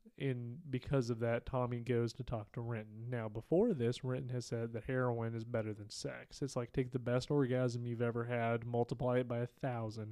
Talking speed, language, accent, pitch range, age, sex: 215 wpm, English, American, 115-130 Hz, 30-49, male